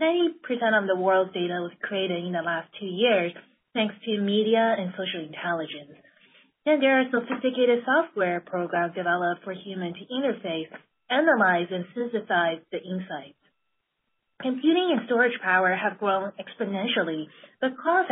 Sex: female